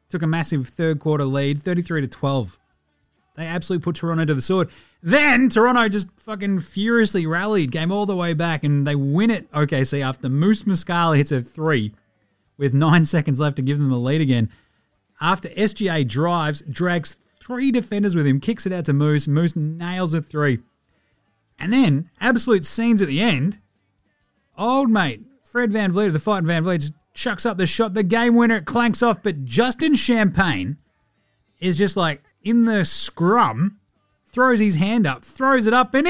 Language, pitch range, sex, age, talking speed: English, 145-220 Hz, male, 30-49, 185 wpm